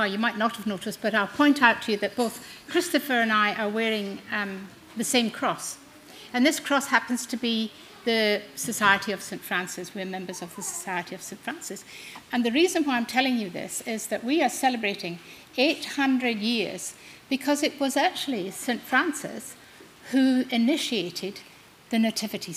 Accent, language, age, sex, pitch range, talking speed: British, English, 60-79, female, 190-240 Hz, 175 wpm